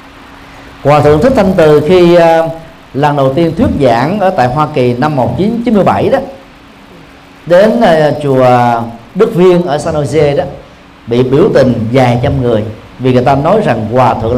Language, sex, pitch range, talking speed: Vietnamese, male, 130-195 Hz, 170 wpm